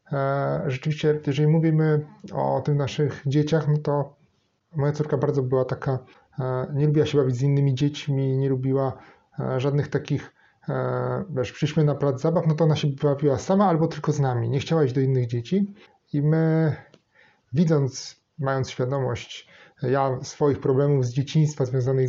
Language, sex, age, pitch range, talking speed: Polish, male, 30-49, 130-150 Hz, 155 wpm